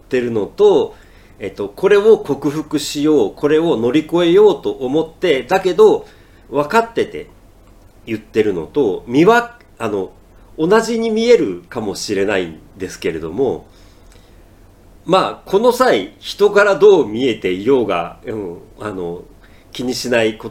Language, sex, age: Japanese, male, 50-69